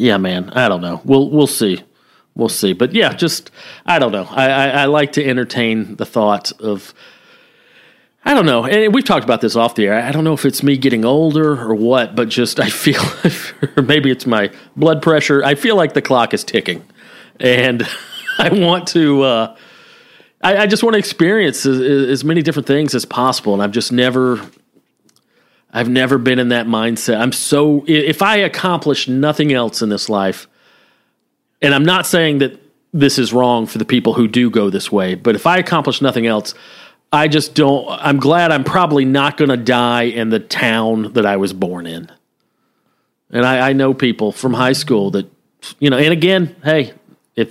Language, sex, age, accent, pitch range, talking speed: English, male, 40-59, American, 115-150 Hz, 200 wpm